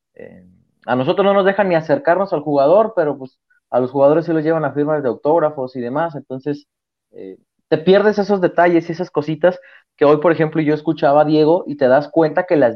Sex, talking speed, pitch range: male, 220 wpm, 130-165 Hz